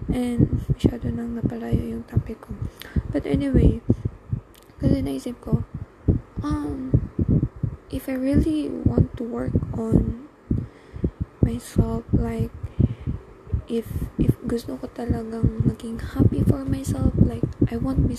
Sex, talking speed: female, 110 wpm